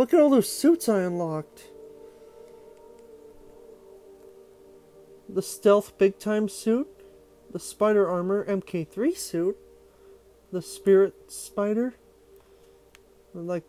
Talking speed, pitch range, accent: 90 wpm, 175-245 Hz, American